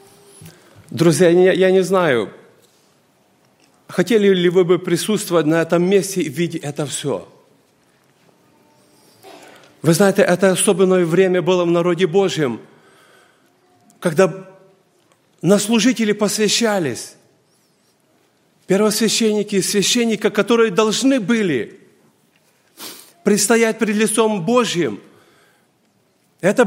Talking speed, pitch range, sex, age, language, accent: 90 wpm, 185-245 Hz, male, 40-59, Russian, native